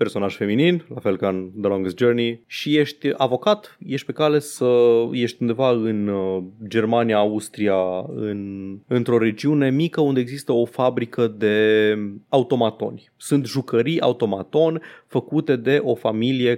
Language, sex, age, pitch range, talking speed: Romanian, male, 20-39, 105-130 Hz, 140 wpm